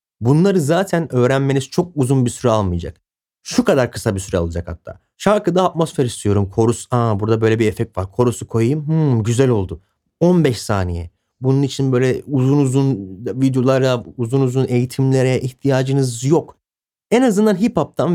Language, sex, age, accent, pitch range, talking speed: Turkish, male, 30-49, native, 105-140 Hz, 150 wpm